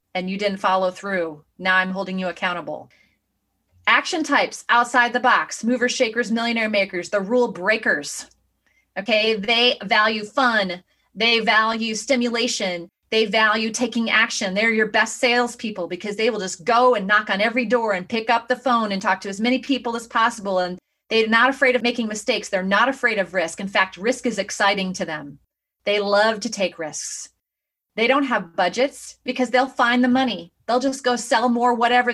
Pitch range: 200-250 Hz